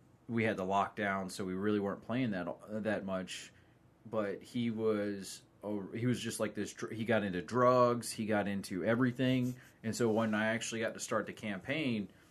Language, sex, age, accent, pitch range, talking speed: English, male, 20-39, American, 105-130 Hz, 185 wpm